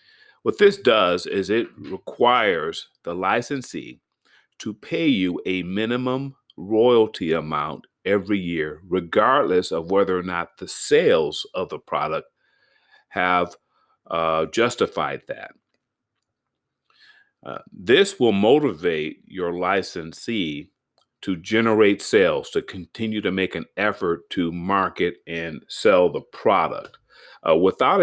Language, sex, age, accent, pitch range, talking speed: English, male, 40-59, American, 90-140 Hz, 115 wpm